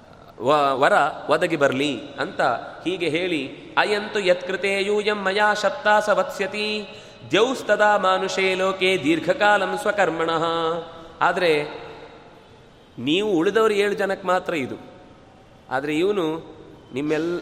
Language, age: Kannada, 30-49